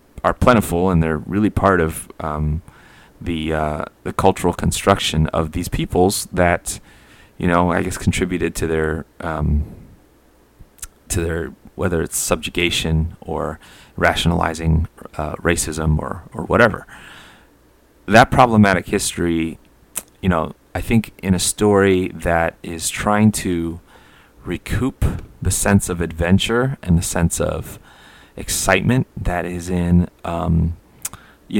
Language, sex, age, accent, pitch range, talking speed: English, male, 30-49, American, 80-95 Hz, 125 wpm